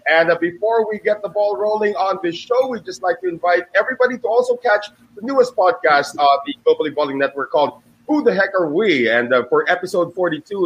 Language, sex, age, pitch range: English, male, 30-49, 160-210 Hz